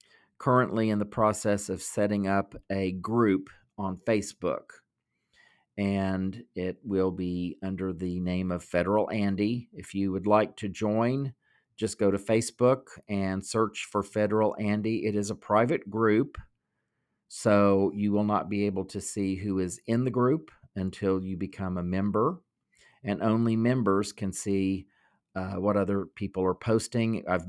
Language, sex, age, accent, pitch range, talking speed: English, male, 50-69, American, 95-110 Hz, 155 wpm